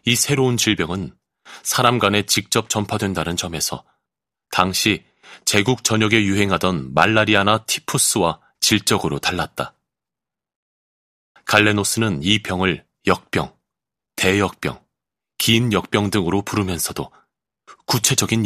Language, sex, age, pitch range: Korean, male, 30-49, 90-110 Hz